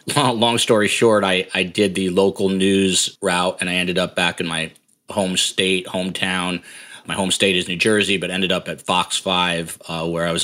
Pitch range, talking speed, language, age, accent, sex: 85-100 Hz, 205 wpm, English, 30-49, American, male